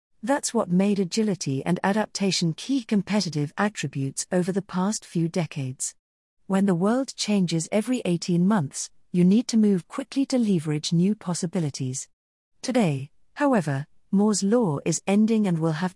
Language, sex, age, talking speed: English, female, 40-59, 145 wpm